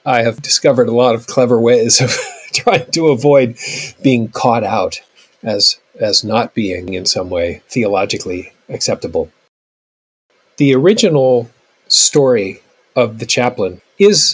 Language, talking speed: English, 130 wpm